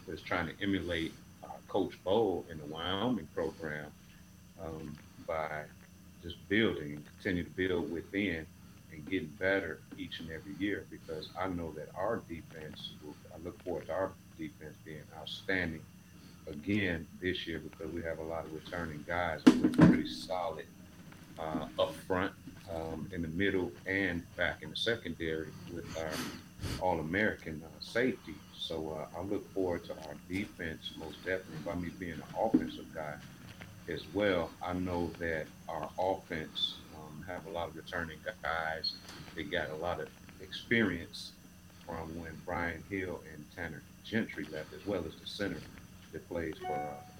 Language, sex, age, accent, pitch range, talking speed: English, male, 40-59, American, 80-95 Hz, 160 wpm